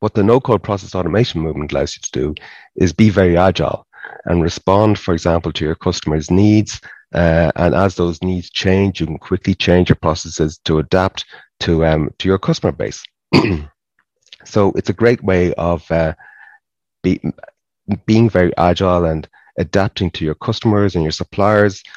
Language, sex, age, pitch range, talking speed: English, male, 30-49, 80-100 Hz, 165 wpm